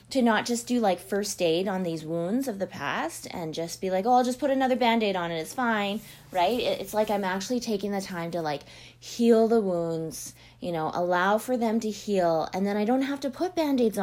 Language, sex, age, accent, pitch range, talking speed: English, female, 20-39, American, 165-220 Hz, 235 wpm